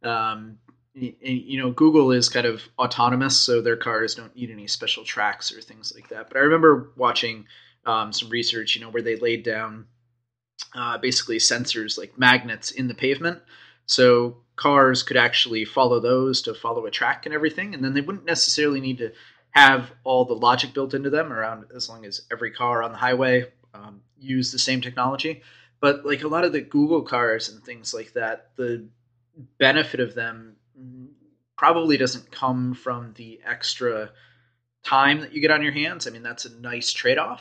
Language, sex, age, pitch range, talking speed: English, male, 20-39, 120-135 Hz, 185 wpm